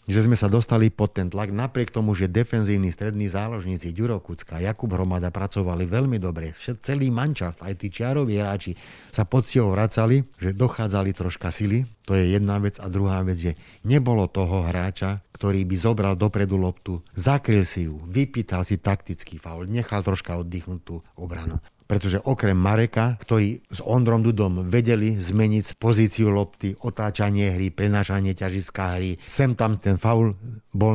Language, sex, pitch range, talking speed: Slovak, male, 95-110 Hz, 160 wpm